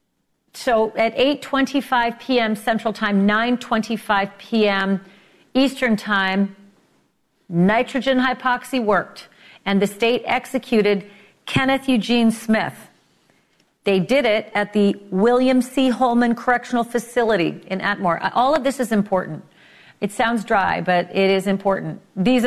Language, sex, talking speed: English, female, 120 wpm